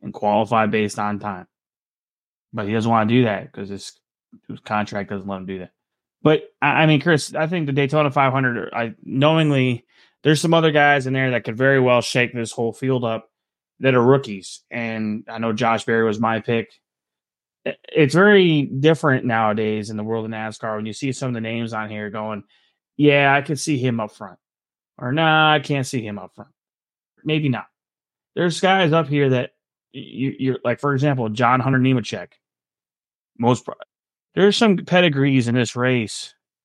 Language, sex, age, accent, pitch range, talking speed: English, male, 20-39, American, 110-150 Hz, 190 wpm